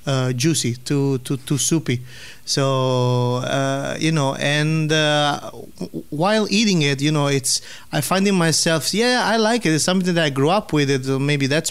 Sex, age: male, 30-49